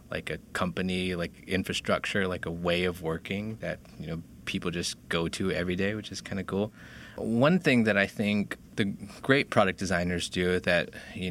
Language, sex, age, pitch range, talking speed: English, male, 20-39, 85-100 Hz, 190 wpm